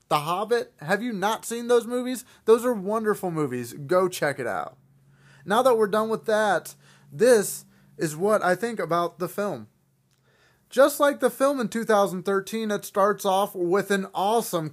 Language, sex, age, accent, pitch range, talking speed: English, male, 30-49, American, 155-210 Hz, 170 wpm